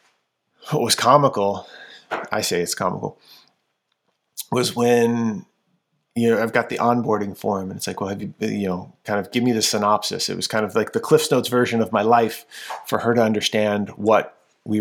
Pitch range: 100-120 Hz